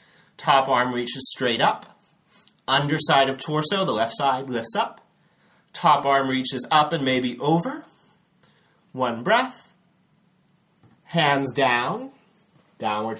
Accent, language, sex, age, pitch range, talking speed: American, English, male, 30-49, 130-170 Hz, 115 wpm